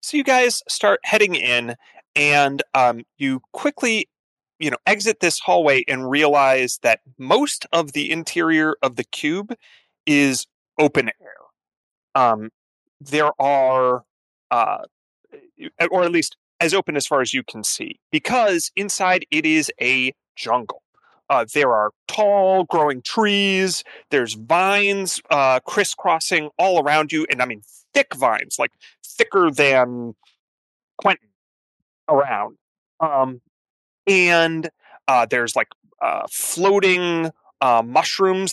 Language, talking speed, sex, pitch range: English, 125 wpm, male, 130-185 Hz